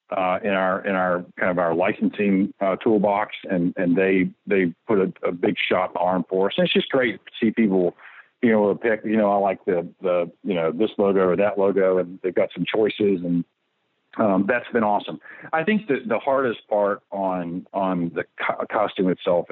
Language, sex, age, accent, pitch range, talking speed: English, male, 50-69, American, 95-120 Hz, 210 wpm